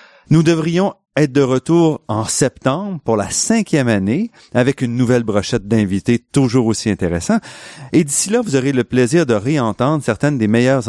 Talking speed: 170 wpm